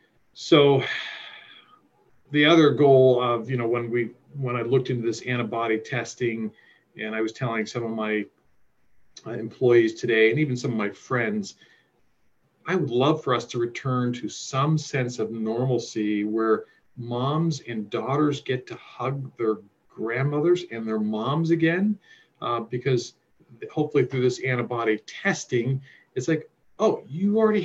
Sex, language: male, English